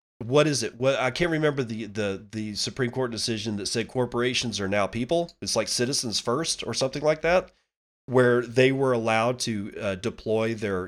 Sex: male